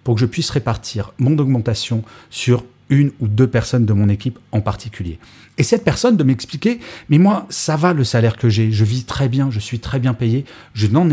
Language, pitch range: French, 110-140 Hz